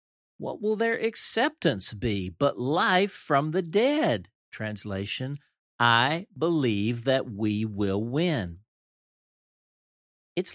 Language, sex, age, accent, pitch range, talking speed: English, male, 50-69, American, 105-145 Hz, 100 wpm